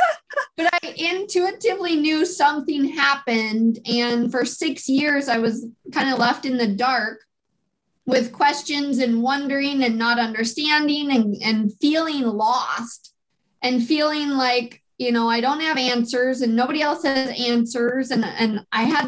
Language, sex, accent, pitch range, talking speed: English, female, American, 235-290 Hz, 150 wpm